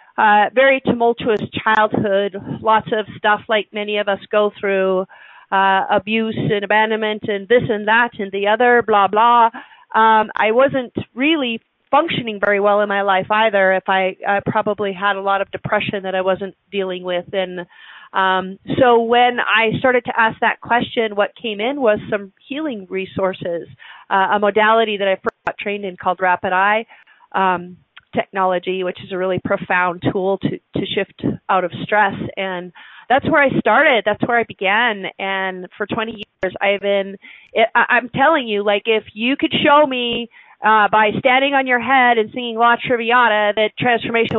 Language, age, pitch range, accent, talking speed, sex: English, 40-59, 195-230 Hz, American, 175 wpm, female